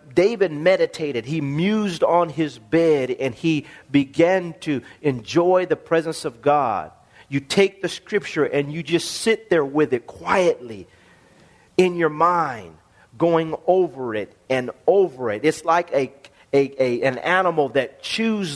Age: 40-59